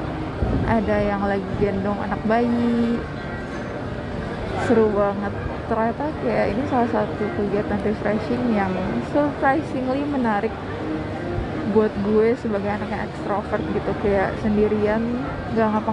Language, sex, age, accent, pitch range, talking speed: Indonesian, female, 20-39, native, 205-235 Hz, 105 wpm